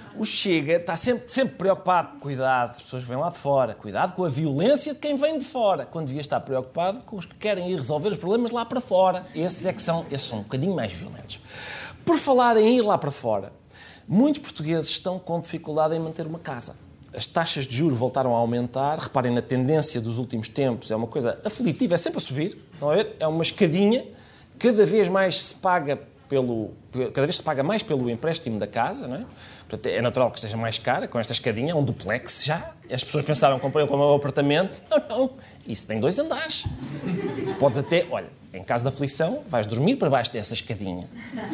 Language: Portuguese